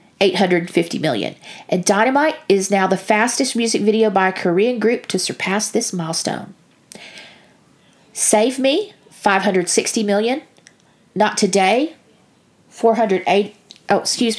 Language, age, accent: English, 40-59, American